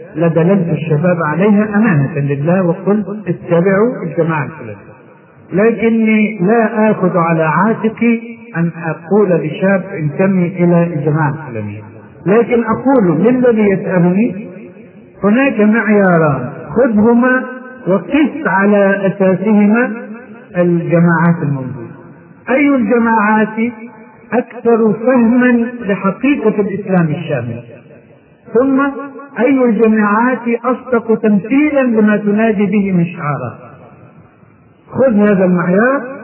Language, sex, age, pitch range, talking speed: Arabic, male, 50-69, 155-220 Hz, 90 wpm